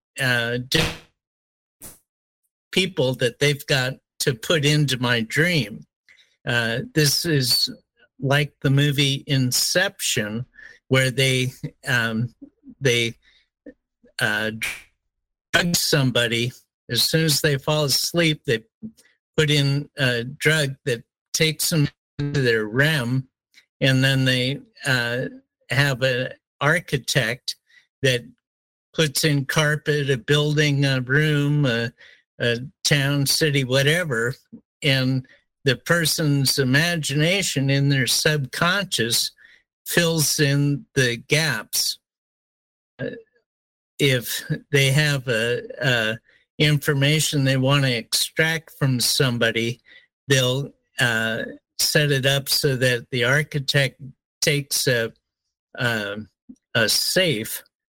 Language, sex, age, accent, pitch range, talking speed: English, male, 50-69, American, 125-155 Hz, 100 wpm